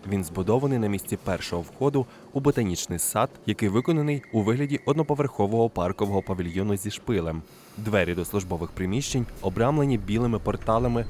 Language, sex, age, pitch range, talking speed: Ukrainian, male, 20-39, 95-120 Hz, 135 wpm